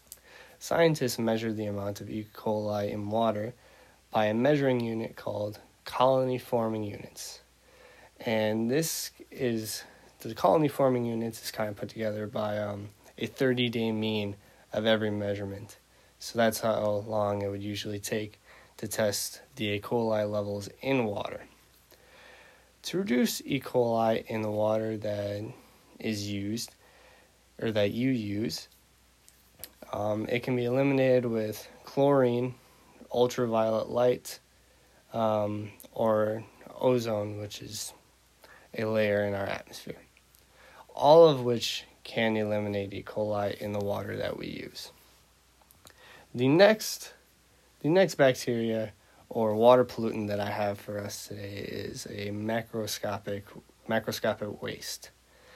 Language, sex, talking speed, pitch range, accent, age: English, male, 125 wpm, 105-120 Hz, American, 20-39